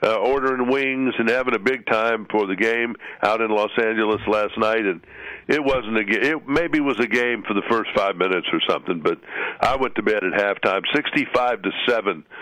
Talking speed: 215 wpm